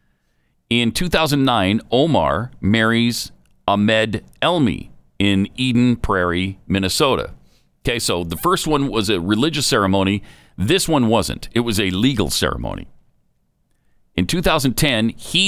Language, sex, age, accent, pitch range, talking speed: English, male, 40-59, American, 90-135 Hz, 115 wpm